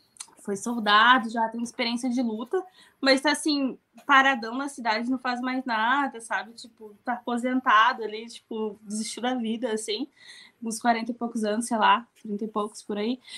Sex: female